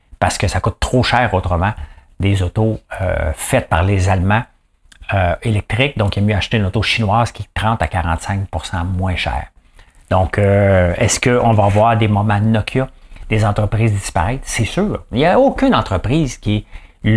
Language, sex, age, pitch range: English, male, 60-79, 85-115 Hz